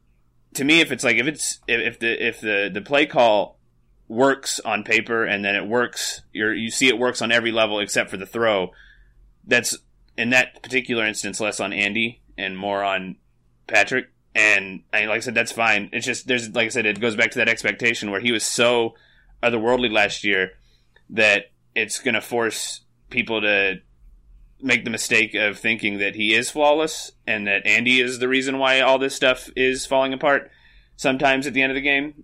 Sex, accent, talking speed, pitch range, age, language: male, American, 200 wpm, 95-120 Hz, 30-49, English